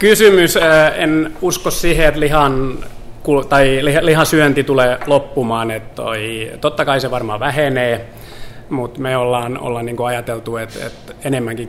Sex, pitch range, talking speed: male, 115-130 Hz, 110 wpm